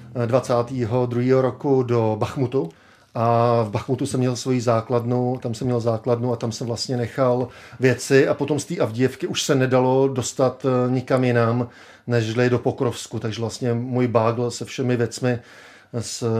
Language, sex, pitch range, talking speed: Czech, male, 120-135 Hz, 155 wpm